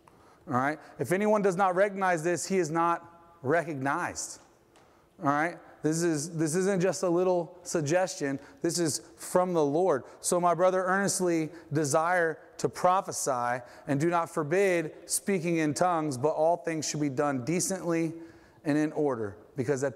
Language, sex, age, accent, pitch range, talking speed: English, male, 30-49, American, 155-185 Hz, 155 wpm